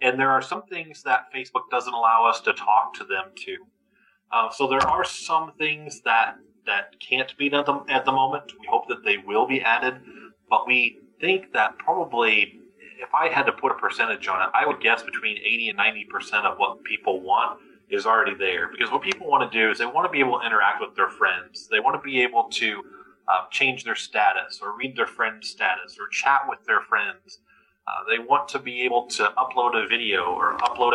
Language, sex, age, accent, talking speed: English, male, 30-49, American, 220 wpm